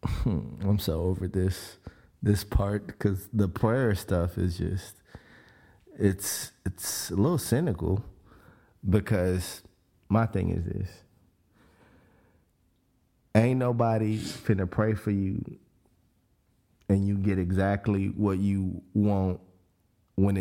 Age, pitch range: 30-49, 95-110 Hz